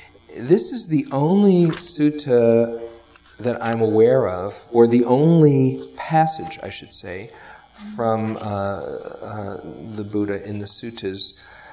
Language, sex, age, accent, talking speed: English, male, 40-59, American, 125 wpm